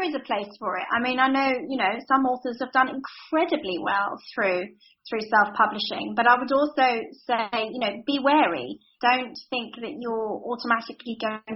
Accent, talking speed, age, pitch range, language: British, 180 wpm, 30-49, 210-265 Hz, English